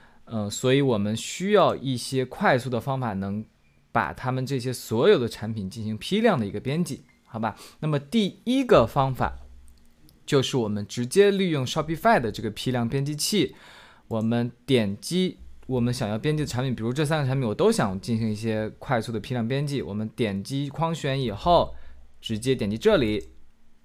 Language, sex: Chinese, male